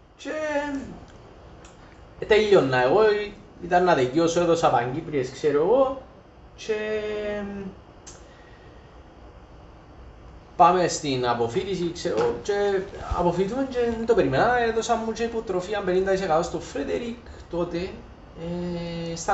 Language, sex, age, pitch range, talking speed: Greek, male, 30-49, 150-210 Hz, 110 wpm